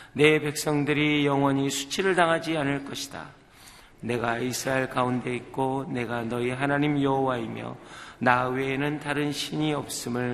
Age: 40-59